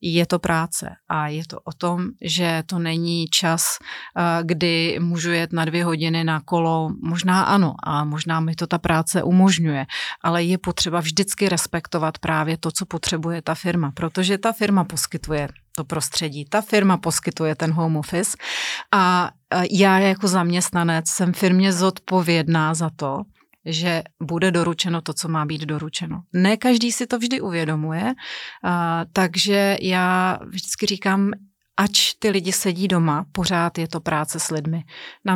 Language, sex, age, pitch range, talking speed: Slovak, female, 30-49, 160-185 Hz, 155 wpm